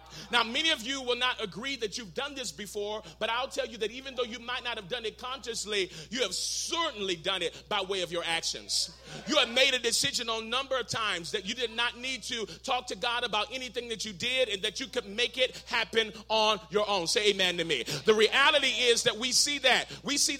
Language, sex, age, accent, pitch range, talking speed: English, male, 30-49, American, 210-275 Hz, 240 wpm